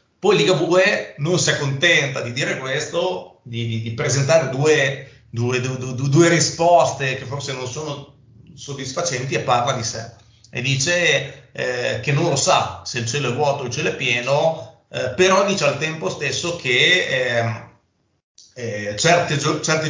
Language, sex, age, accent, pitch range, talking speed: Italian, male, 30-49, native, 125-155 Hz, 165 wpm